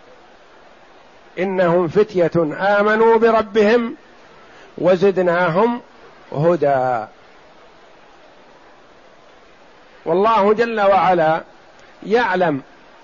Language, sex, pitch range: Arabic, male, 175-205 Hz